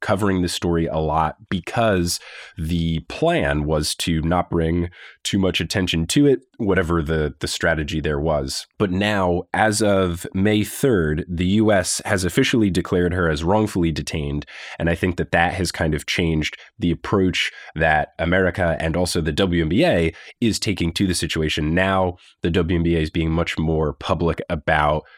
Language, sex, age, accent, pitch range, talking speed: English, male, 20-39, American, 80-95 Hz, 165 wpm